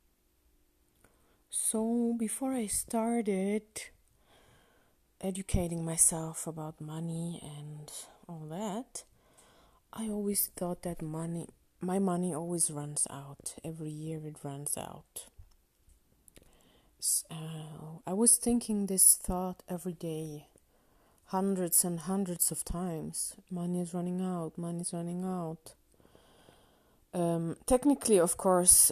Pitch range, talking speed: 145-185 Hz, 105 wpm